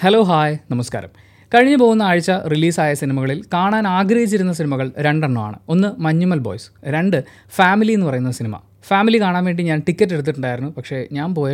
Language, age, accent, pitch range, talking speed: Malayalam, 20-39, native, 135-185 Hz, 150 wpm